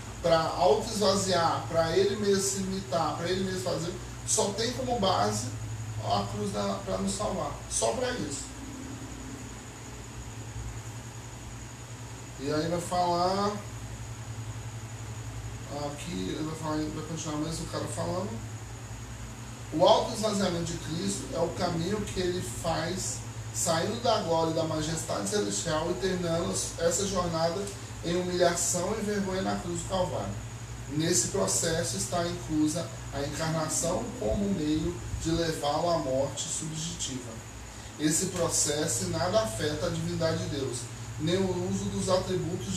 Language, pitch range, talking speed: Portuguese, 115-165 Hz, 125 wpm